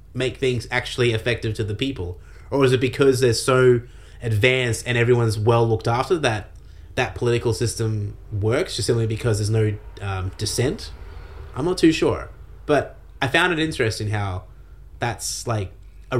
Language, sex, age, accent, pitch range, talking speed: English, male, 20-39, Australian, 100-135 Hz, 165 wpm